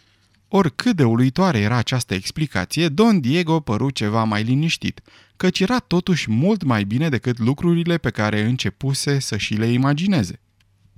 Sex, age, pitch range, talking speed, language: male, 30-49, 105-165 Hz, 150 wpm, Romanian